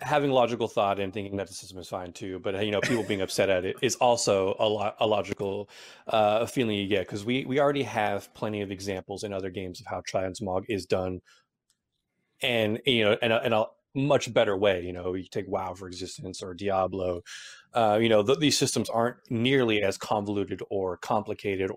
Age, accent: 30-49, American